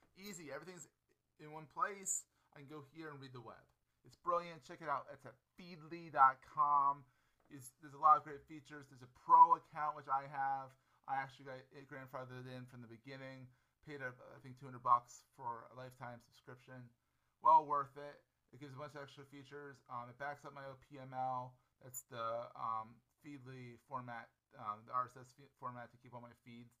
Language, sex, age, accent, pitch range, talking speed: English, male, 30-49, American, 115-140 Hz, 190 wpm